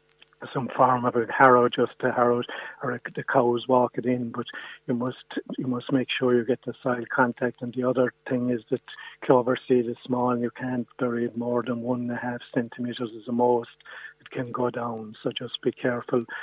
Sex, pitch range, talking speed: male, 120-125 Hz, 220 wpm